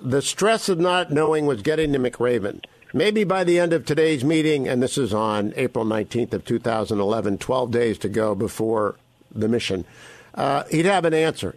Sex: male